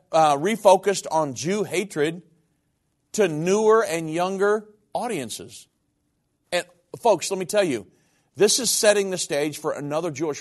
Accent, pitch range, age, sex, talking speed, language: American, 155-205 Hz, 50-69, male, 140 wpm, English